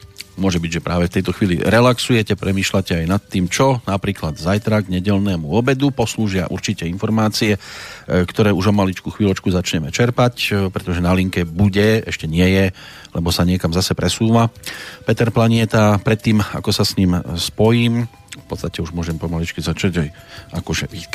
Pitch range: 85-105 Hz